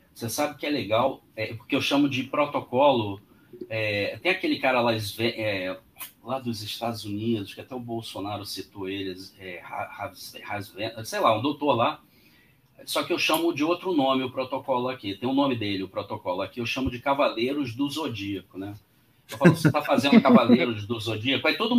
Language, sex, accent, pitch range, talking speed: Portuguese, male, Brazilian, 115-180 Hz, 185 wpm